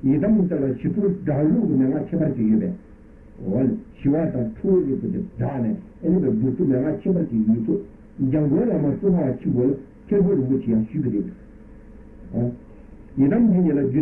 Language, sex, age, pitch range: Italian, male, 60-79, 130-195 Hz